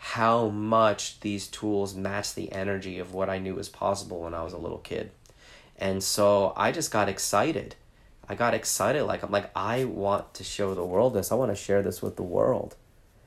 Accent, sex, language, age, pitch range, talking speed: American, male, English, 30-49, 95-115 Hz, 210 wpm